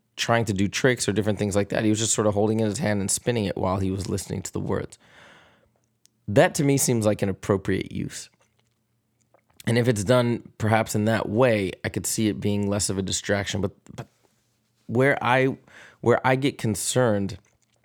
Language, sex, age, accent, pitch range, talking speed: English, male, 20-39, American, 100-120 Hz, 210 wpm